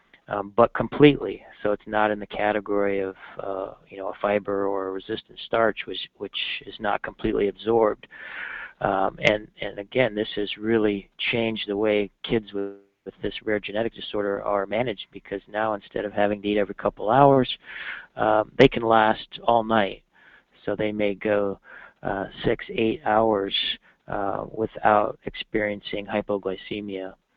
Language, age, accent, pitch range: English, 40-59, American, 100-110 Hz